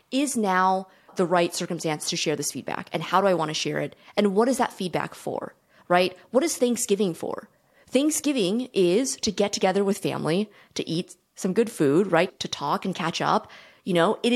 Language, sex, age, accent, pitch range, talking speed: English, female, 20-39, American, 165-210 Hz, 205 wpm